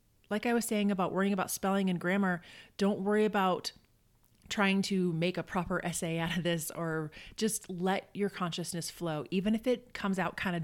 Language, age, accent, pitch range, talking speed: English, 30-49, American, 175-215 Hz, 195 wpm